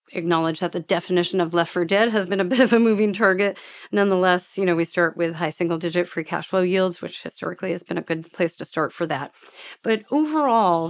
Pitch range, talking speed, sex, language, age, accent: 160-185 Hz, 225 wpm, female, English, 40-59, American